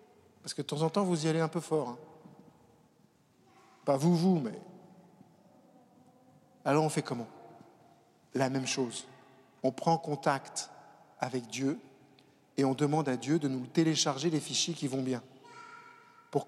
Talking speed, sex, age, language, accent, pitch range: 155 wpm, male, 50-69, French, French, 155-235 Hz